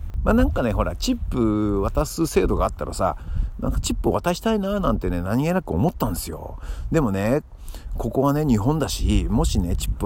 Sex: male